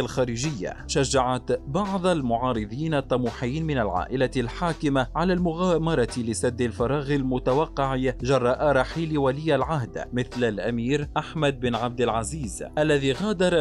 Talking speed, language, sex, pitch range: 110 wpm, Arabic, male, 125-150 Hz